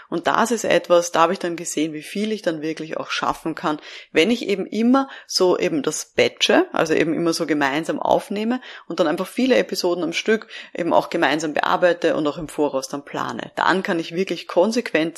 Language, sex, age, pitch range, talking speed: German, female, 30-49, 165-215 Hz, 210 wpm